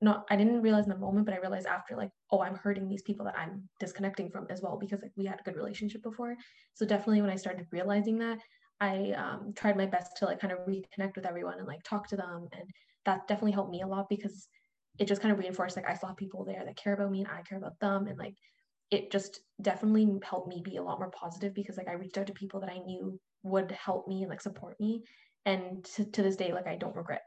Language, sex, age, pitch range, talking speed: English, female, 10-29, 190-210 Hz, 260 wpm